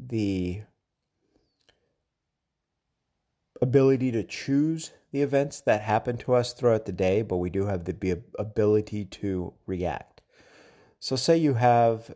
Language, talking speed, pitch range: English, 125 wpm, 95-120 Hz